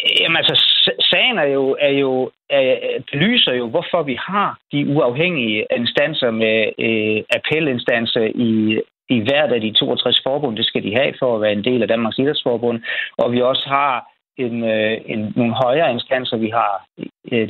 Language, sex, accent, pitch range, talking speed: Danish, male, native, 115-145 Hz, 180 wpm